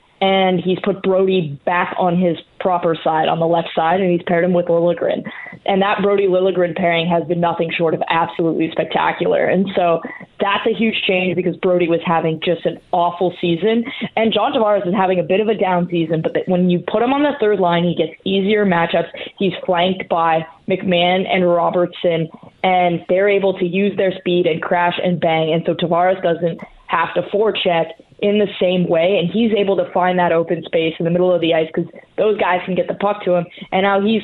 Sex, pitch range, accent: female, 170-200 Hz, American